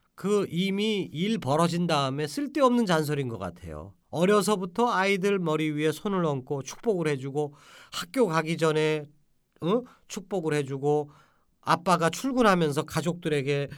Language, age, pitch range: Korean, 40-59, 135-205 Hz